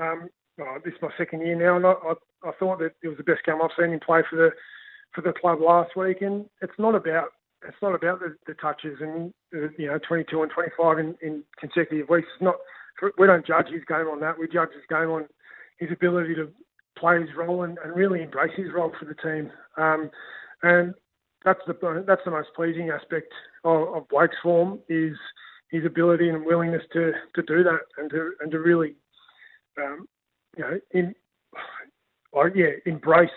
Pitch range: 160-180 Hz